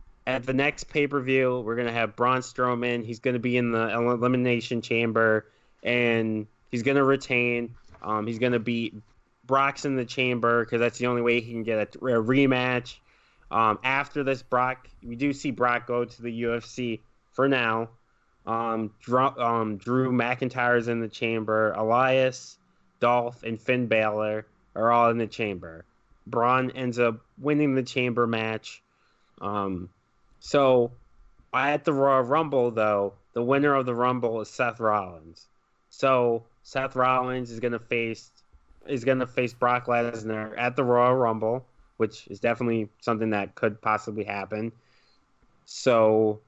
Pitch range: 110-125 Hz